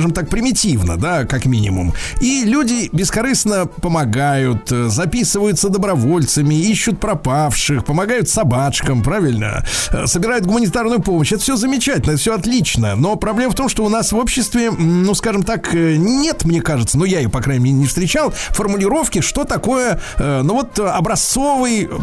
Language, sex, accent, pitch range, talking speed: Russian, male, native, 140-225 Hz, 150 wpm